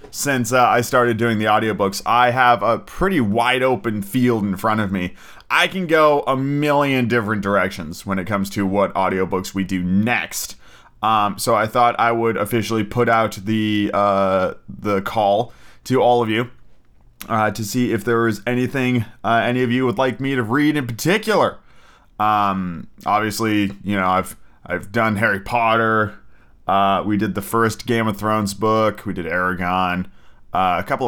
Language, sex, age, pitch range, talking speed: English, male, 30-49, 100-125 Hz, 180 wpm